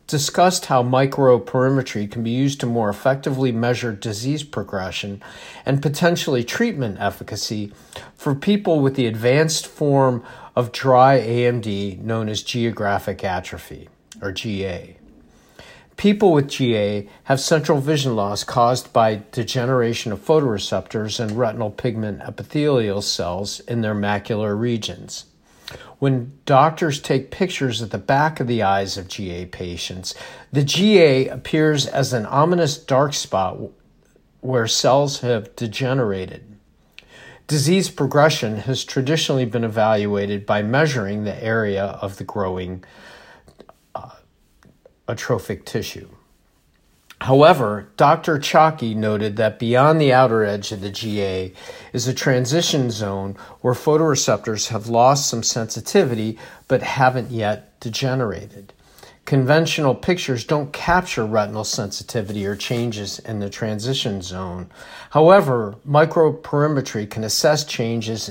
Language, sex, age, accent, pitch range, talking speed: English, male, 50-69, American, 105-135 Hz, 120 wpm